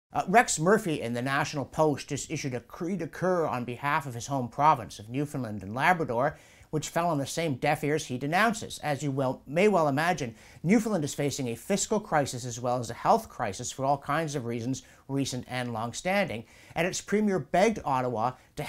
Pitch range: 125-180 Hz